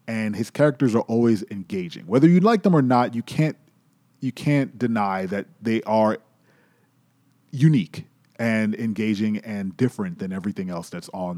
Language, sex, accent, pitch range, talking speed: English, male, American, 105-140 Hz, 160 wpm